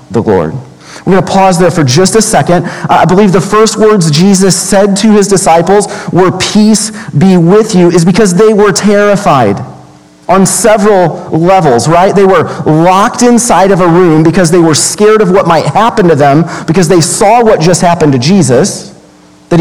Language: English